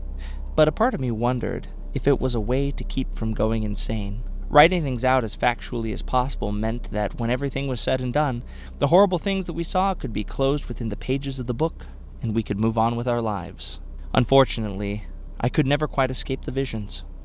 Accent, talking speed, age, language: American, 215 wpm, 20-39, English